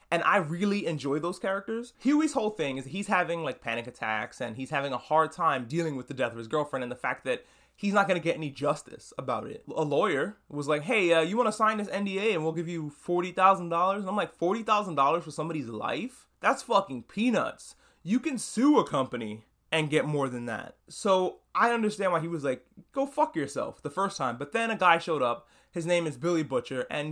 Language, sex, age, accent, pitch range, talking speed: English, male, 20-39, American, 145-200 Hz, 230 wpm